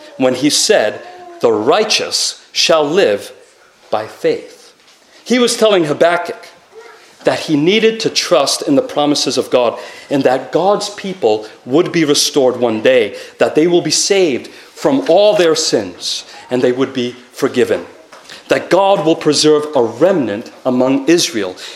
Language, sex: English, male